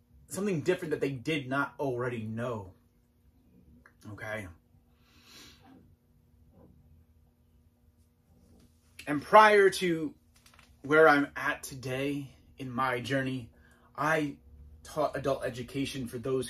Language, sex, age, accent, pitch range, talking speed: English, male, 30-49, American, 120-160 Hz, 90 wpm